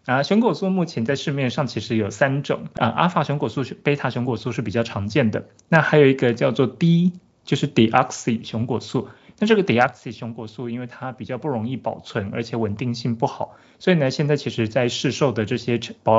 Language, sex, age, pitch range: Chinese, male, 20-39, 115-140 Hz